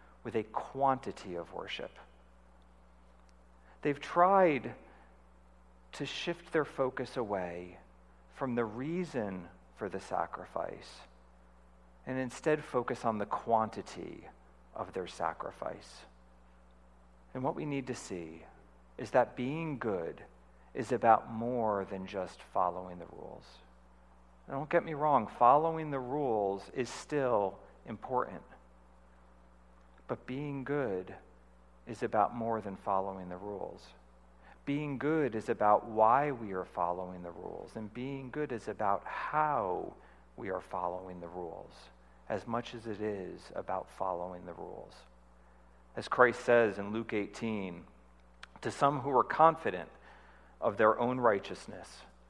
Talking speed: 125 wpm